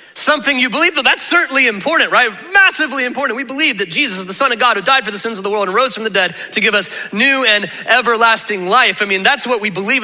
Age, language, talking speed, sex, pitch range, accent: 30-49, English, 270 wpm, male, 190-260 Hz, American